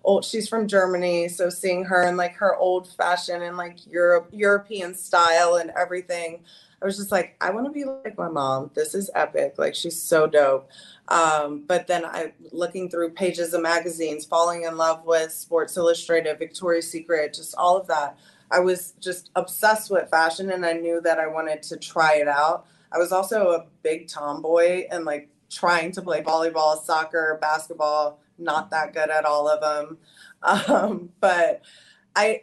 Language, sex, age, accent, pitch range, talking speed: English, female, 20-39, American, 155-185 Hz, 180 wpm